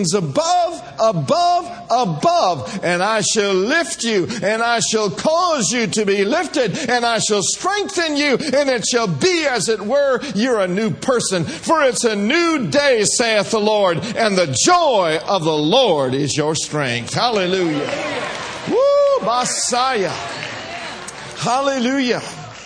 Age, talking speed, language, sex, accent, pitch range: 50-69, 140 wpm, English, male, American, 185-275 Hz